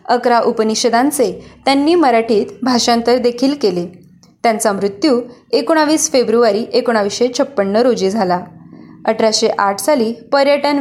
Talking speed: 100 wpm